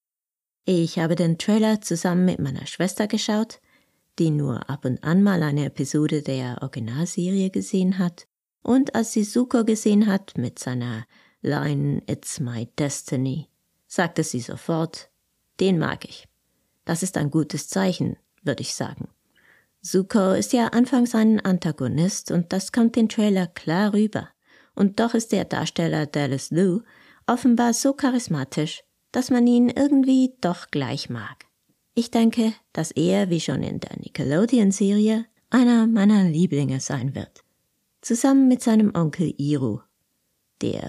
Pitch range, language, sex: 150-225 Hz, German, female